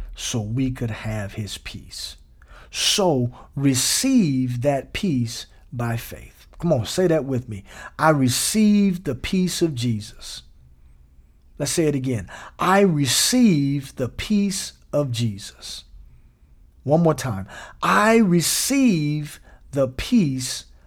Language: English